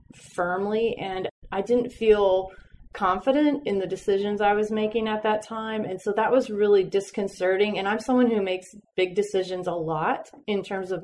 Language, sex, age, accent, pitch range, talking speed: English, female, 30-49, American, 180-210 Hz, 180 wpm